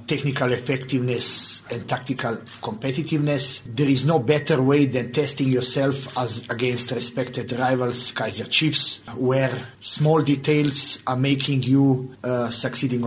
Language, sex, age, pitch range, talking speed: English, male, 50-69, 120-135 Hz, 125 wpm